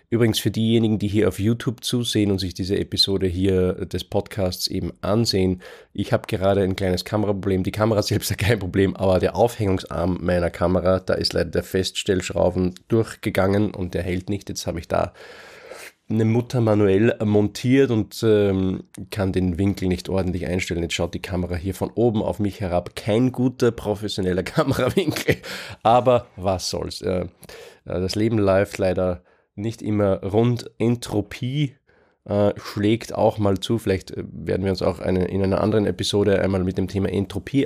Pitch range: 95-110 Hz